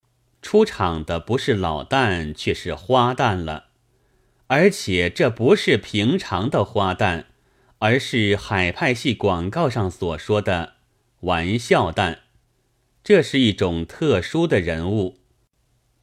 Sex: male